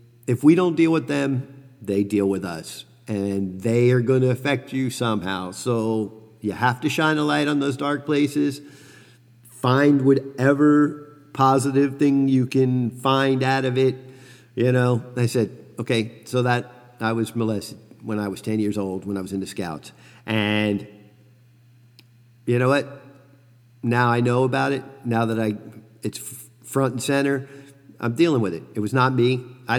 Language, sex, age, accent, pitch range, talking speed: English, male, 50-69, American, 105-130 Hz, 170 wpm